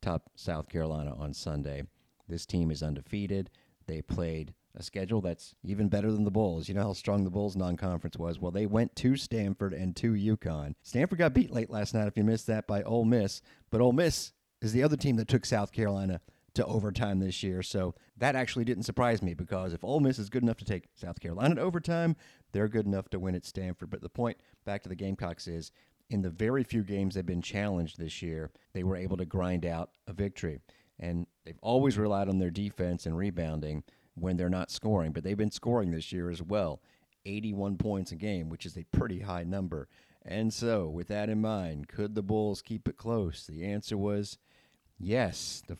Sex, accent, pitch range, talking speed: male, American, 90-110 Hz, 210 wpm